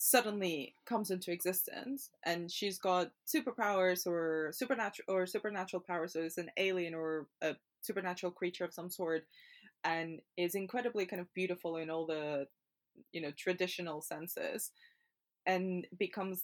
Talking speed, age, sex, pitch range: 140 wpm, 20-39, female, 175-205 Hz